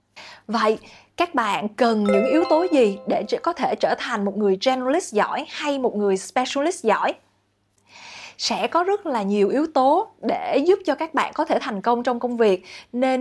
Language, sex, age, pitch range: Vietnamese, female, 20-39, 220-290 Hz